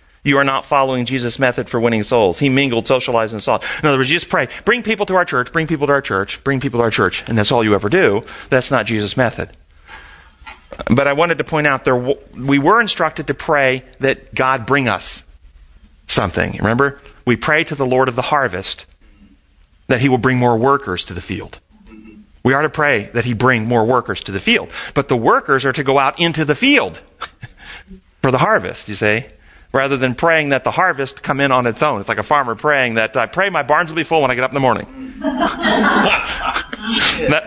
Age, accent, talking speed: 40-59, American, 225 wpm